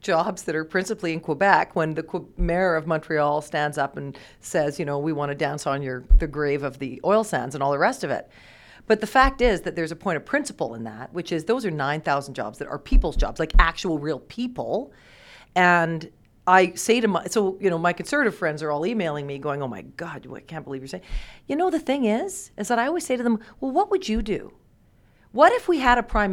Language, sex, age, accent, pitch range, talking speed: English, female, 40-59, American, 150-210 Hz, 245 wpm